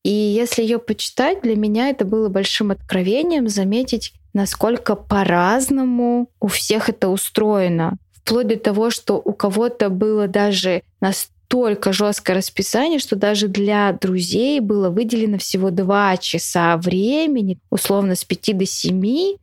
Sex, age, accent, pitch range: female, 20-39, native, 190-225 Hz